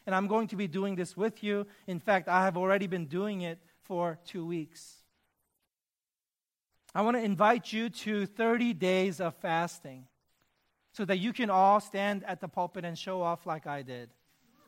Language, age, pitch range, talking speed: English, 30-49, 180-225 Hz, 185 wpm